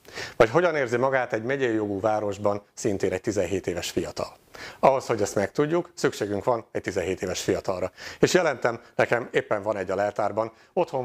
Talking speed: 175 wpm